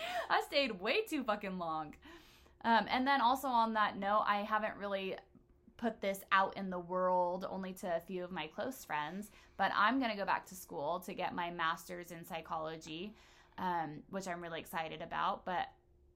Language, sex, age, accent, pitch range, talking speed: English, female, 20-39, American, 185-230 Hz, 190 wpm